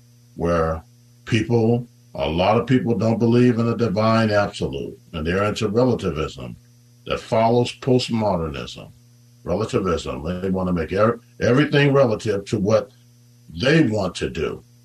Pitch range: 105-120 Hz